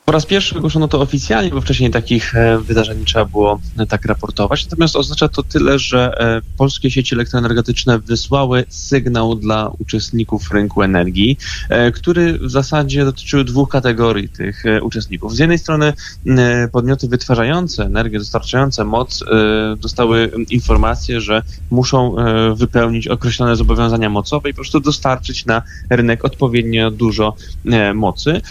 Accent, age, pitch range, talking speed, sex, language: native, 20-39, 105-130 Hz, 130 wpm, male, Polish